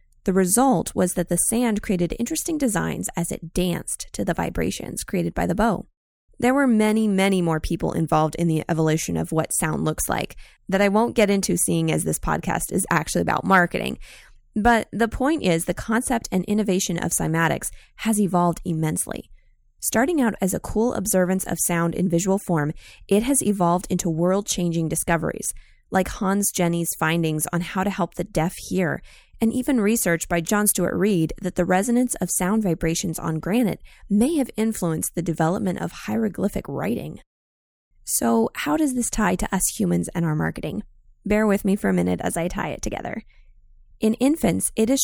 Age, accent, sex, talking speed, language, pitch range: 20-39, American, female, 185 wpm, English, 170-215 Hz